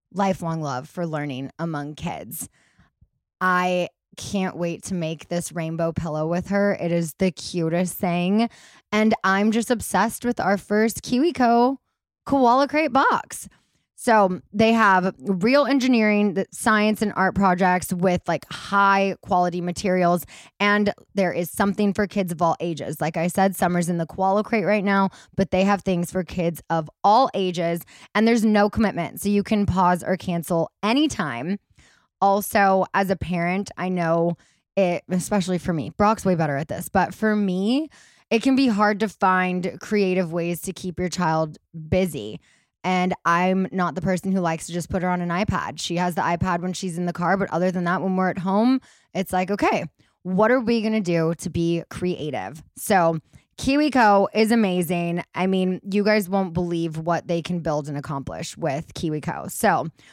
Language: English